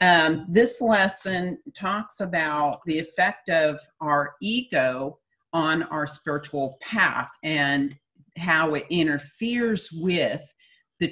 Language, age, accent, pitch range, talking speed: English, 50-69, American, 150-190 Hz, 110 wpm